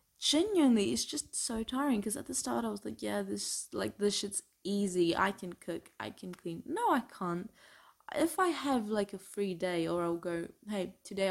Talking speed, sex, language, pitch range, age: 205 wpm, female, English, 180-225 Hz, 20-39